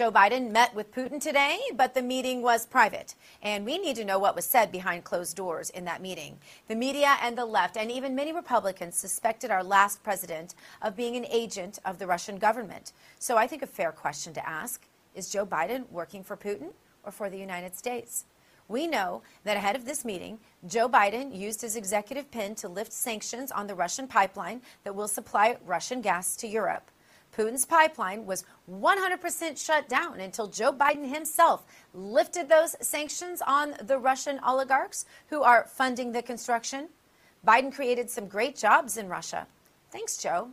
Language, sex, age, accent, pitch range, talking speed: English, female, 40-59, American, 195-265 Hz, 180 wpm